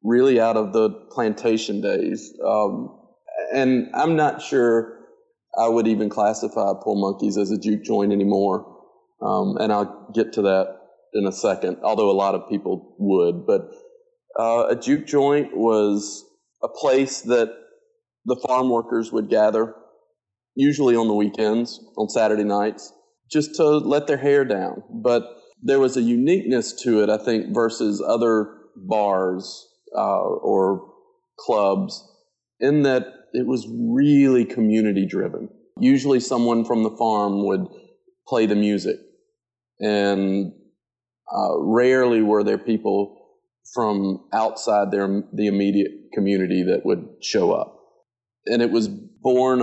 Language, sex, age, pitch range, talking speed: English, male, 40-59, 105-140 Hz, 140 wpm